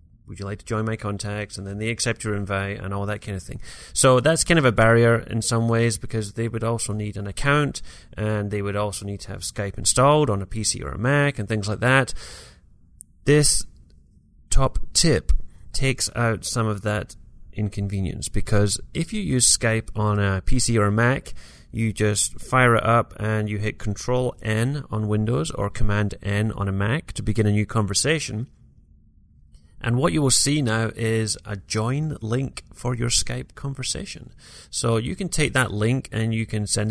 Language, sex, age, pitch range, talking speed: English, male, 30-49, 100-120 Hz, 195 wpm